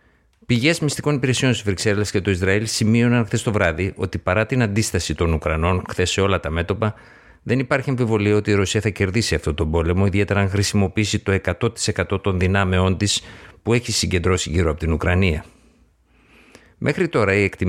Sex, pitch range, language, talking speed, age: male, 90-110 Hz, Greek, 180 wpm, 50-69